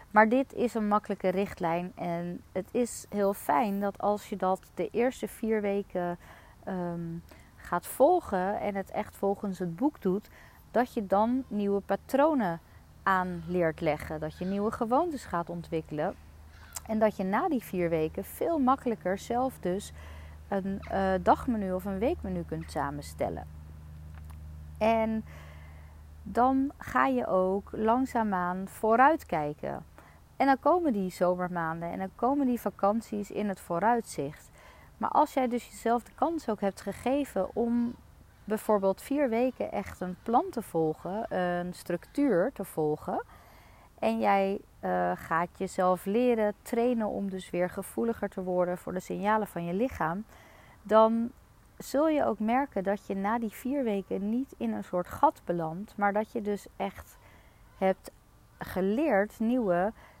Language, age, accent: Dutch, 40-59, Dutch